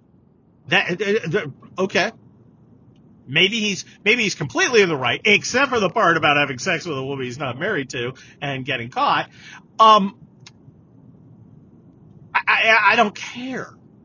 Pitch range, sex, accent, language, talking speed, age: 125-175 Hz, male, American, English, 140 wpm, 40-59